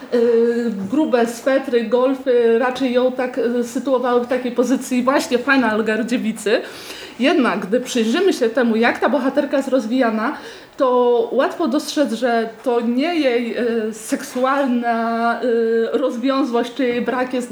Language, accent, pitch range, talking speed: Polish, native, 240-285 Hz, 125 wpm